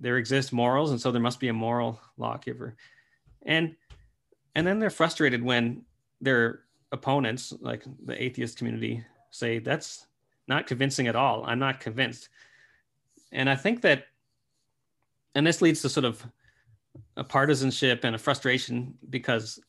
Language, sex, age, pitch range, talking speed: English, male, 30-49, 120-140 Hz, 145 wpm